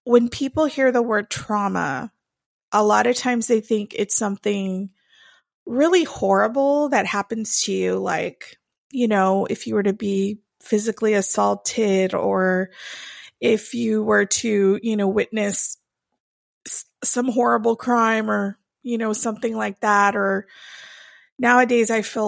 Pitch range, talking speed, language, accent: 210-245 Hz, 135 wpm, English, American